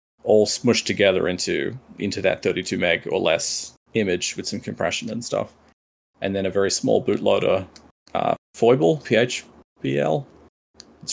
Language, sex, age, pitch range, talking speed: English, male, 20-39, 80-105 Hz, 140 wpm